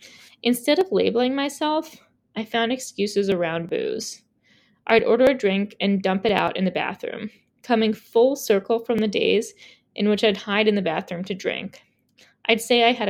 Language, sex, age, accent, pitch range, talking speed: English, female, 20-39, American, 200-245 Hz, 180 wpm